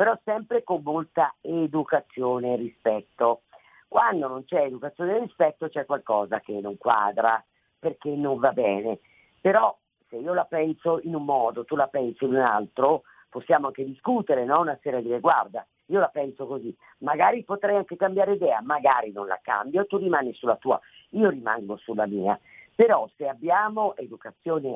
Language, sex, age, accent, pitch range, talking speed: Italian, female, 50-69, native, 125-175 Hz, 165 wpm